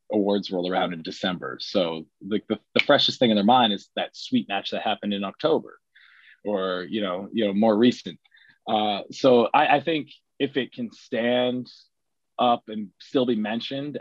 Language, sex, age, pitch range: English, male, 20-39, 95-115 Hz